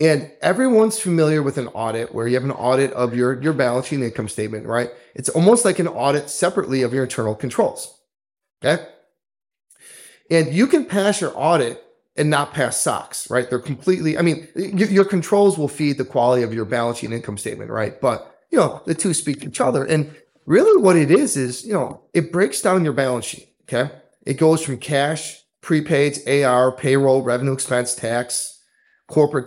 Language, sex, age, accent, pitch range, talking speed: English, male, 30-49, American, 130-170 Hz, 195 wpm